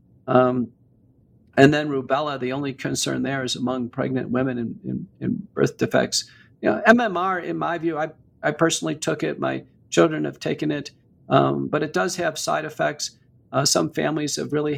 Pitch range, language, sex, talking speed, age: 125-165 Hz, English, male, 180 wpm, 50-69